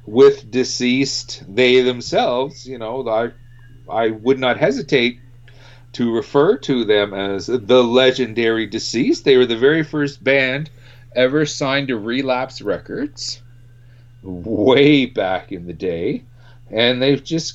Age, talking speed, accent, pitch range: 40-59, 130 wpm, American, 110-140 Hz